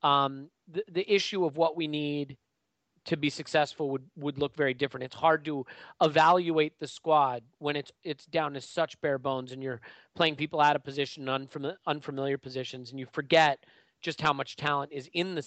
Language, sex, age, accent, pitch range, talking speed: English, male, 30-49, American, 140-170 Hz, 190 wpm